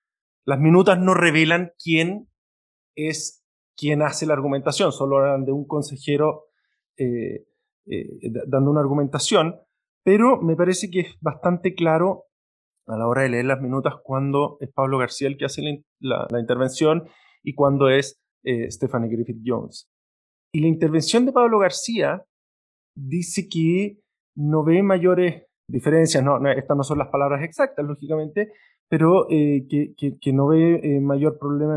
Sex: male